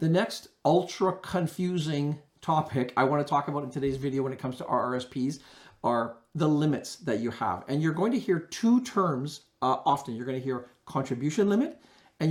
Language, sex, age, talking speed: English, male, 50-69, 185 wpm